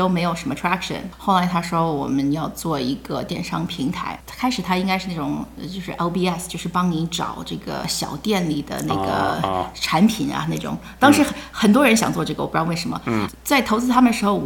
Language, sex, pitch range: Chinese, female, 155-200 Hz